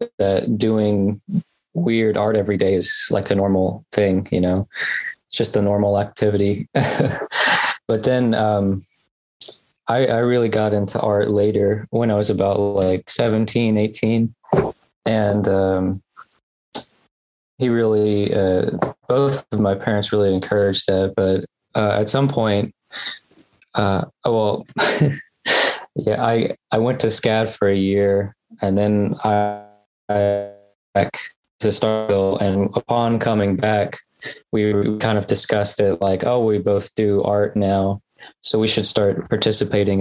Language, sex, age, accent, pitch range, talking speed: English, male, 20-39, American, 95-110 Hz, 135 wpm